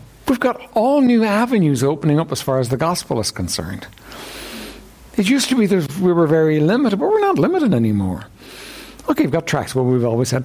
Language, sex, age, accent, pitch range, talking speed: English, male, 60-79, American, 125-205 Hz, 205 wpm